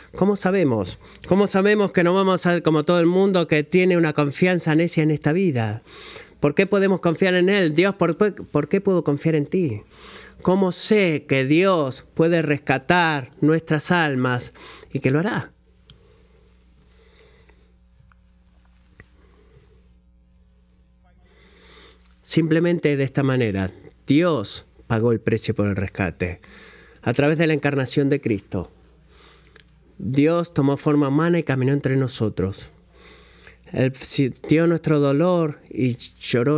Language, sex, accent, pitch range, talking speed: Spanish, male, Argentinian, 115-170 Hz, 130 wpm